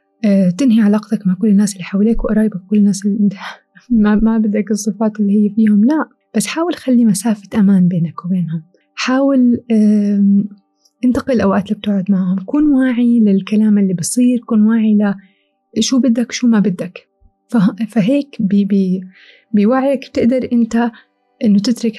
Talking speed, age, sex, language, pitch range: 135 wpm, 20-39, female, Arabic, 195-235 Hz